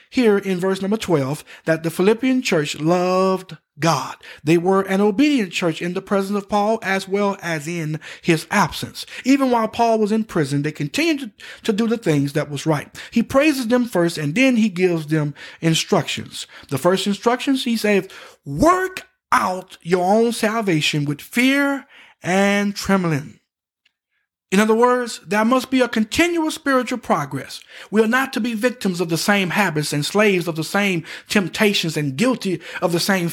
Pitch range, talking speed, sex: 175-250 Hz, 175 wpm, male